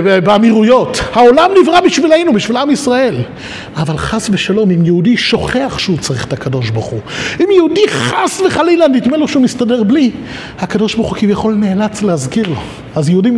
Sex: male